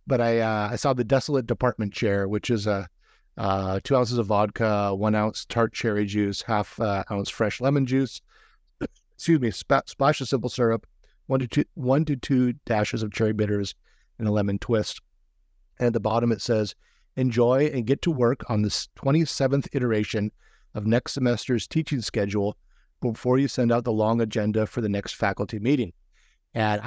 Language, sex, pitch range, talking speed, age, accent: English, male, 105-135 Hz, 190 wpm, 50-69, American